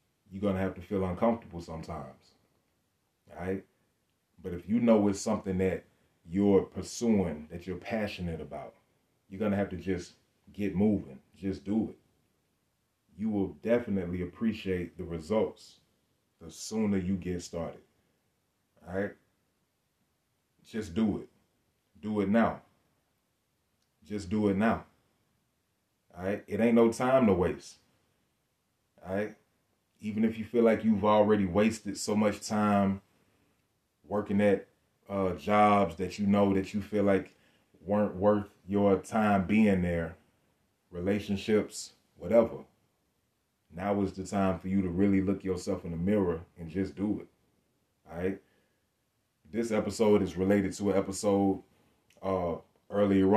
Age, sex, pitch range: 30-49, male, 90-105 Hz